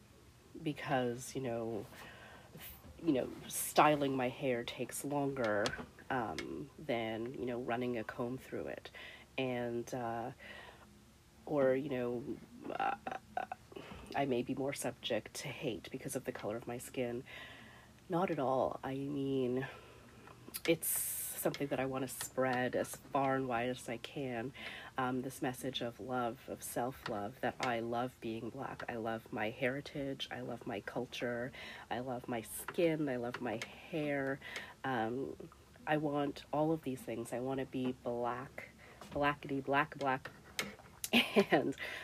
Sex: female